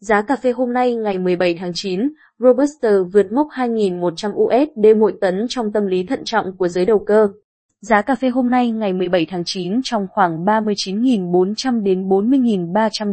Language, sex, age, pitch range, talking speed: Vietnamese, female, 20-39, 190-235 Hz, 180 wpm